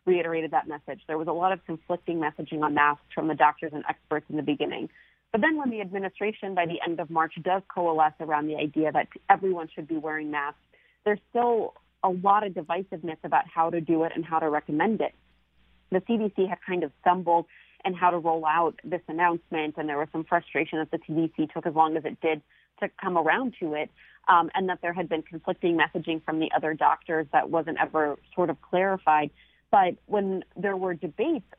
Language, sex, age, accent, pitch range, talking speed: English, female, 30-49, American, 155-190 Hz, 215 wpm